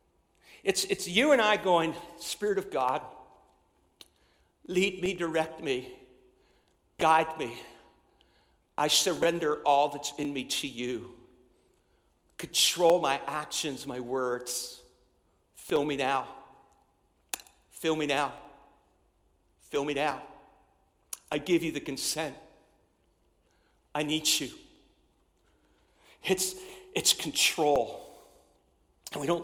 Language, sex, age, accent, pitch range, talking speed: English, male, 50-69, American, 145-225 Hz, 105 wpm